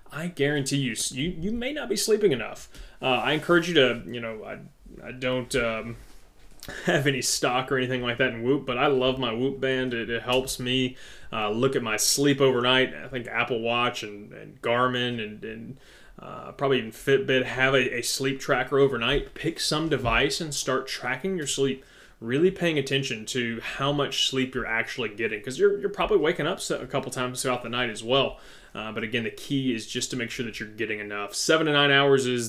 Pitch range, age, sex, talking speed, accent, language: 120-140 Hz, 20-39, male, 215 wpm, American, English